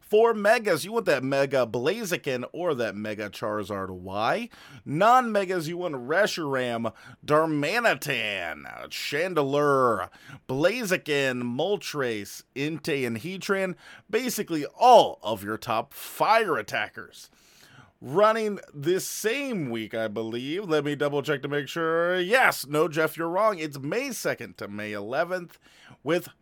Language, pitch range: English, 120-180 Hz